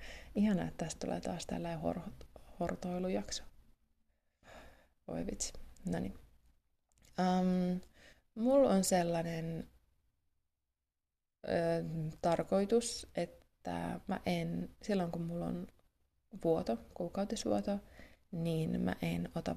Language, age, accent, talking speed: Finnish, 20-39, native, 85 wpm